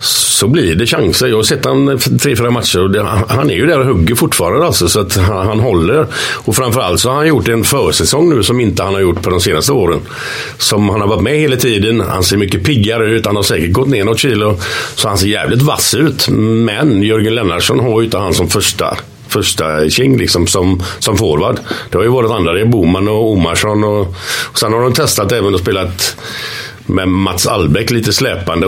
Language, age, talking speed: English, 50-69, 220 wpm